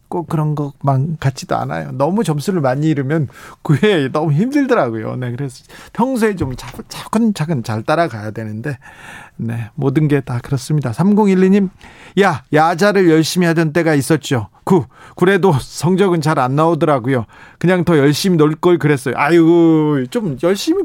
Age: 40-59